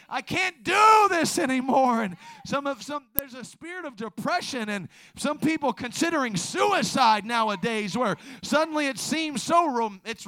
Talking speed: 150 wpm